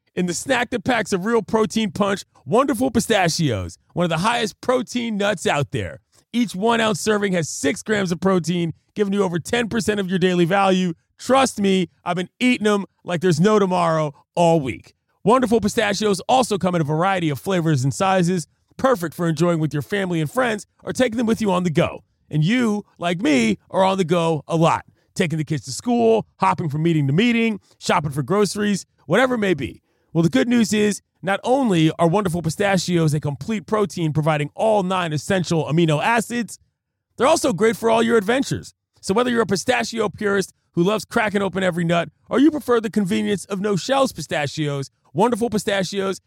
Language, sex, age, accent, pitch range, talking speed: English, male, 30-49, American, 165-220 Hz, 195 wpm